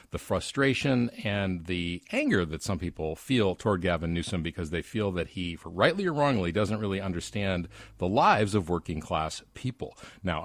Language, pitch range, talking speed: English, 85-115 Hz, 180 wpm